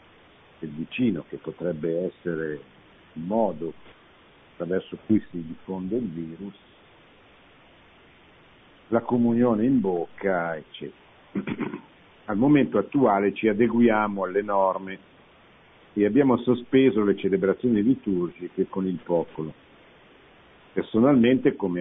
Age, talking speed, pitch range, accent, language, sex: 70-89, 100 wpm, 90-115 Hz, native, Italian, male